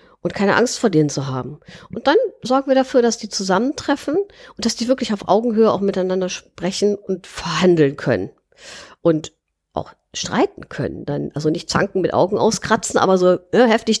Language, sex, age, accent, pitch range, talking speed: German, female, 50-69, German, 170-235 Hz, 175 wpm